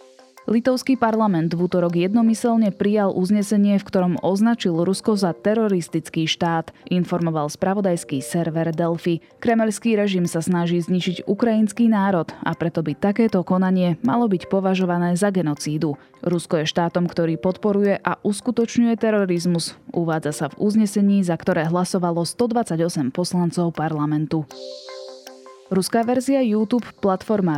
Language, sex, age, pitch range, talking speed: Slovak, female, 20-39, 160-210 Hz, 125 wpm